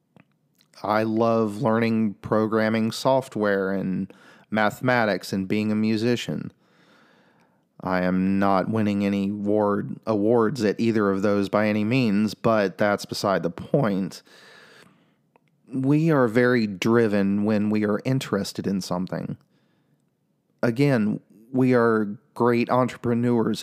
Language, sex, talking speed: English, male, 110 wpm